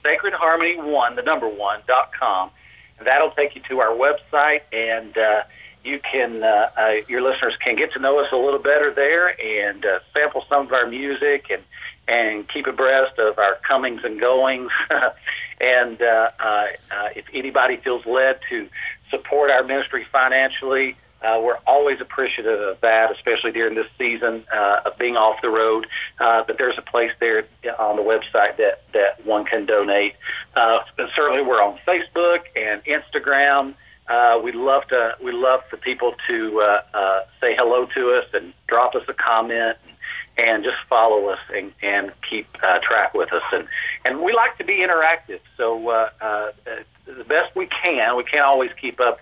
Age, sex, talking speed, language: 50-69, male, 180 wpm, English